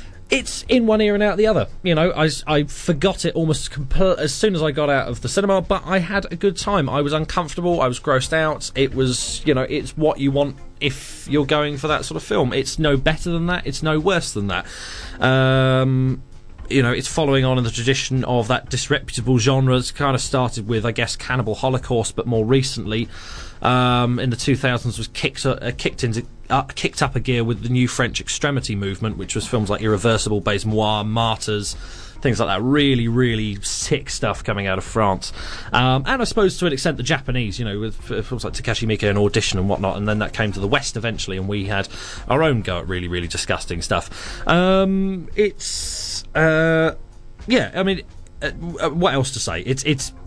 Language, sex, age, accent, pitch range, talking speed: English, male, 20-39, British, 110-155 Hz, 215 wpm